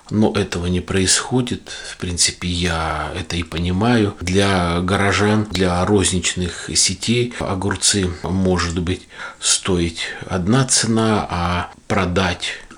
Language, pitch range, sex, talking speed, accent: Russian, 90-105 Hz, male, 110 wpm, native